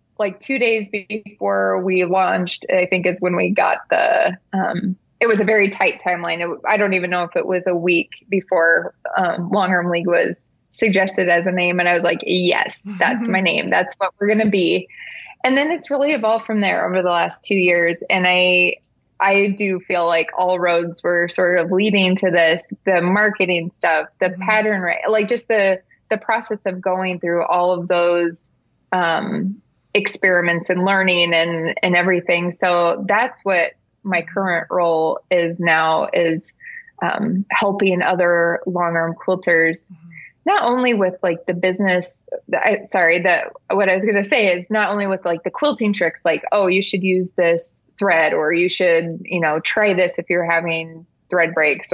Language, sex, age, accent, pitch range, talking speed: English, female, 20-39, American, 170-200 Hz, 185 wpm